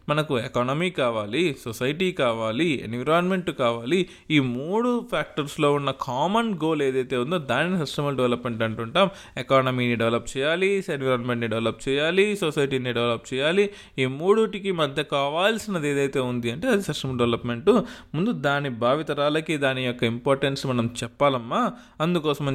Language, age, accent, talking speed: Telugu, 20-39, native, 125 wpm